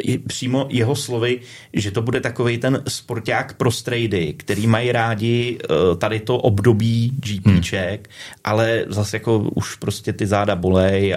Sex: male